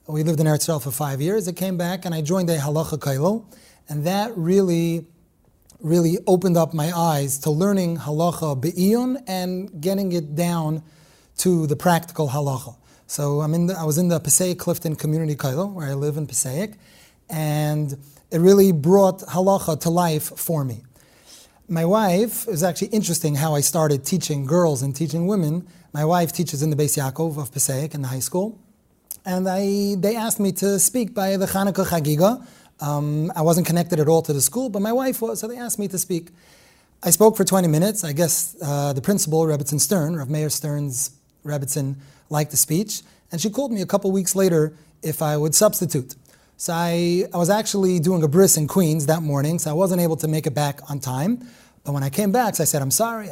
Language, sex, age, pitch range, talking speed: English, male, 30-49, 150-190 Hz, 205 wpm